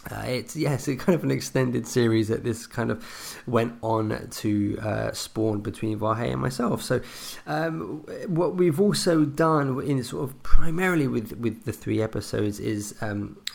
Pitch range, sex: 105-130 Hz, male